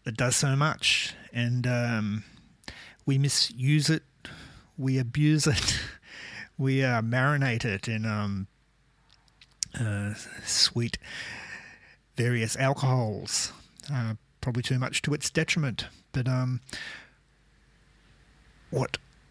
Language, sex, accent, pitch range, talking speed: English, male, Australian, 105-130 Hz, 100 wpm